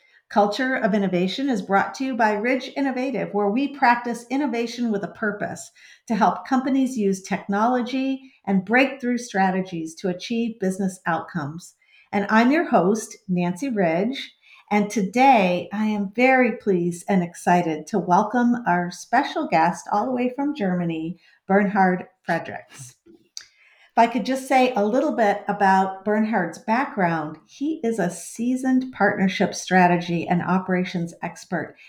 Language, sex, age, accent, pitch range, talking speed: English, female, 50-69, American, 180-240 Hz, 140 wpm